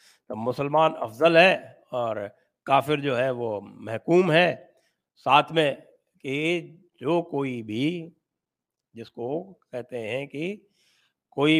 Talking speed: 110 wpm